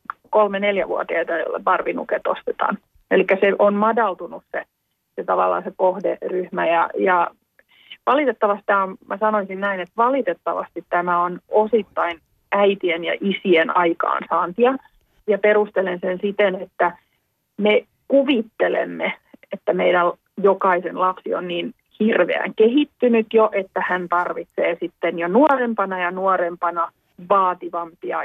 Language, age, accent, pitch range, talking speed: Finnish, 30-49, native, 180-220 Hz, 115 wpm